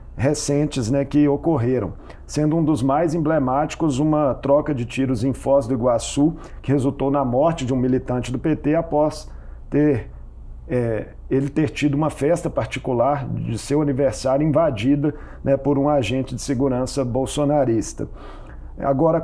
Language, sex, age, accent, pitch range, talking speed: Portuguese, male, 50-69, Brazilian, 130-155 Hz, 140 wpm